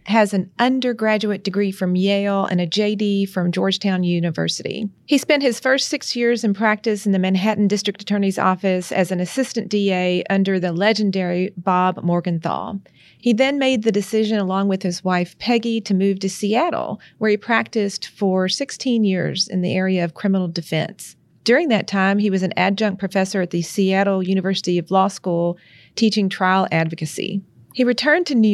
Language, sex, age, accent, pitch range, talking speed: English, female, 40-59, American, 185-220 Hz, 175 wpm